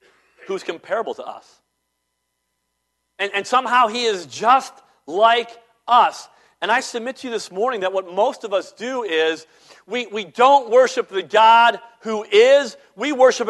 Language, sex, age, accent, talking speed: English, male, 50-69, American, 160 wpm